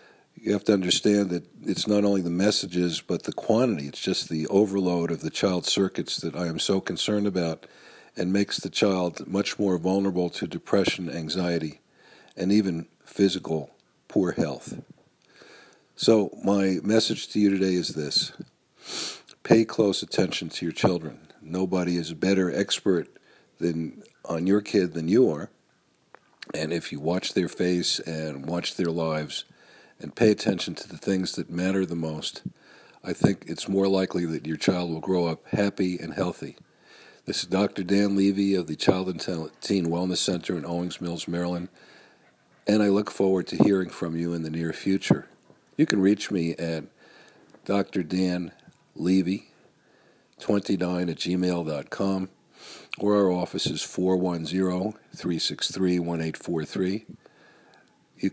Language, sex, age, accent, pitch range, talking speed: English, male, 50-69, American, 85-95 Hz, 150 wpm